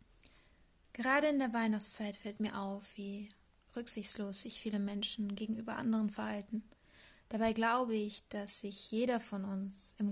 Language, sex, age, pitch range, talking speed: German, female, 20-39, 210-230 Hz, 140 wpm